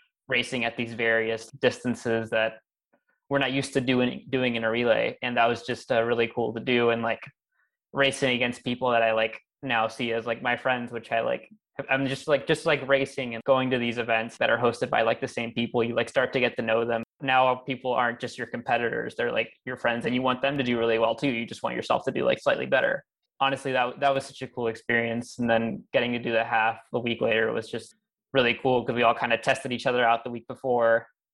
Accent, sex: American, male